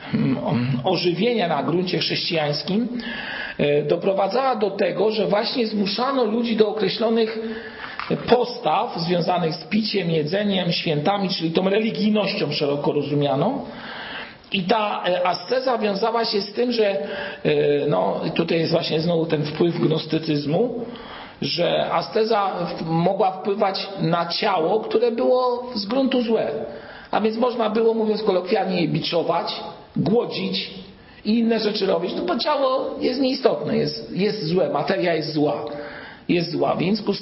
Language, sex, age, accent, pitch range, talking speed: Polish, male, 50-69, native, 170-225 Hz, 125 wpm